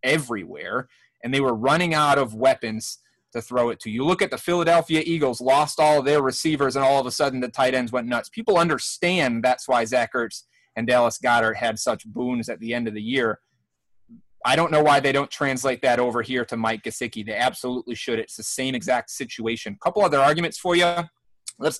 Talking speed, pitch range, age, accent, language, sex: 215 wpm, 125-155 Hz, 30-49, American, English, male